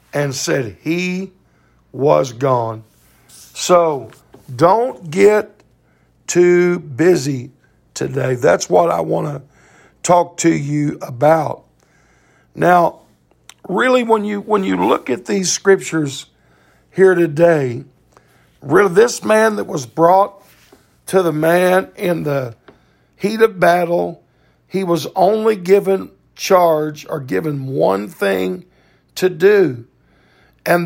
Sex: male